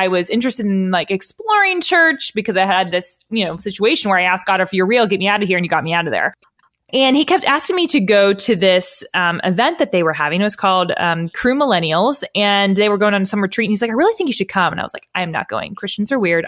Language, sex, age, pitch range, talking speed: English, female, 20-39, 180-235 Hz, 295 wpm